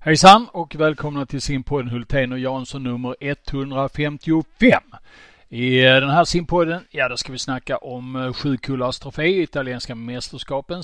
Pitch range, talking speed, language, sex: 125-150 Hz, 135 wpm, Swedish, male